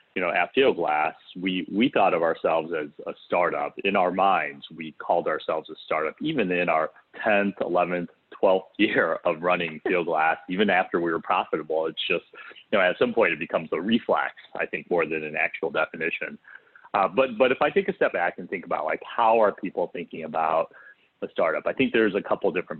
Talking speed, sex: 215 wpm, male